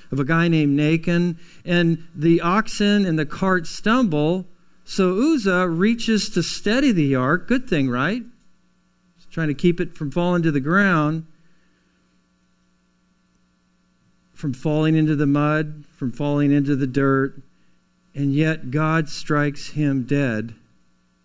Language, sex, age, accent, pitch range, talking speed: English, male, 50-69, American, 125-175 Hz, 135 wpm